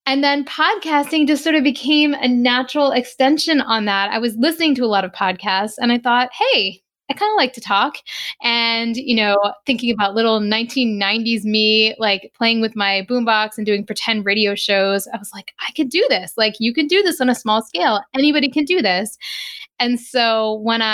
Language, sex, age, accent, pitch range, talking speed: English, female, 10-29, American, 205-260 Hz, 205 wpm